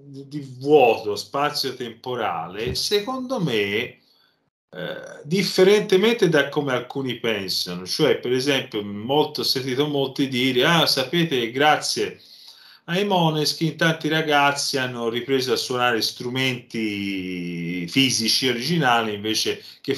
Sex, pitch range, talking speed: male, 115-180 Hz, 105 wpm